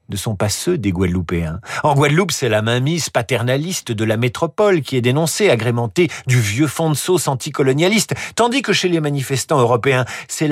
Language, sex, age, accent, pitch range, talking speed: French, male, 50-69, French, 135-200 Hz, 185 wpm